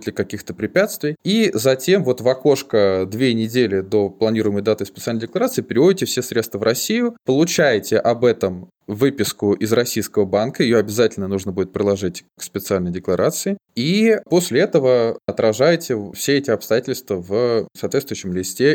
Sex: male